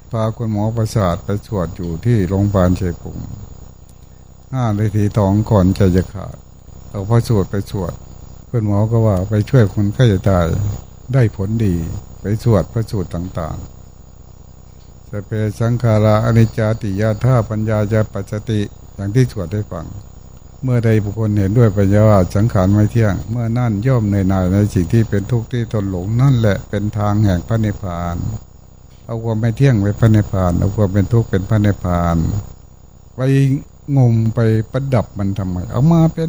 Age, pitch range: 60-79, 100-125 Hz